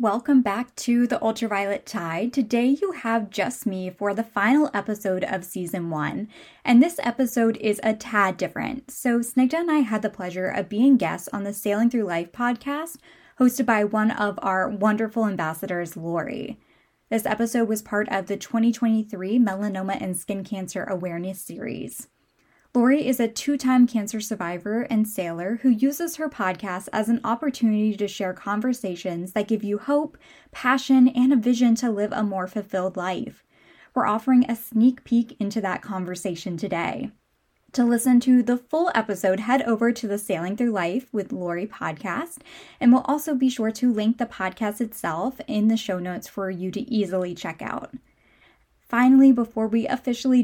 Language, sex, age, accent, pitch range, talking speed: English, female, 10-29, American, 195-250 Hz, 170 wpm